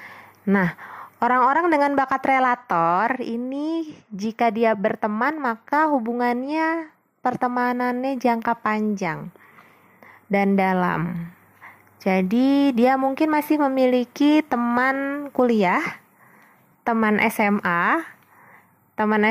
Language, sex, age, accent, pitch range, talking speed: Indonesian, female, 20-39, native, 200-260 Hz, 80 wpm